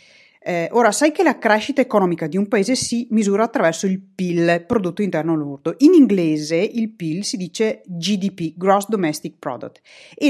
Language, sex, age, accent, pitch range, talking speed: Italian, female, 30-49, native, 170-250 Hz, 170 wpm